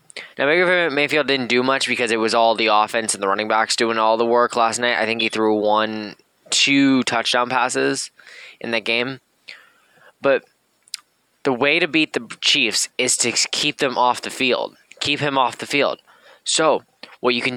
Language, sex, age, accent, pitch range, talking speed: English, male, 10-29, American, 115-135 Hz, 190 wpm